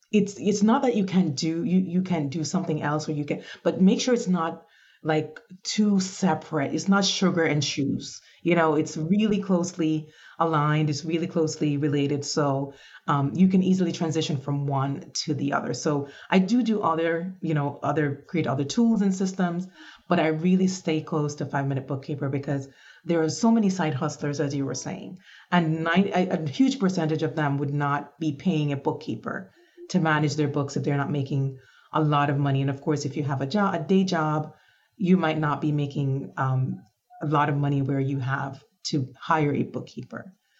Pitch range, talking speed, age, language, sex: 145-175 Hz, 200 wpm, 30-49, English, female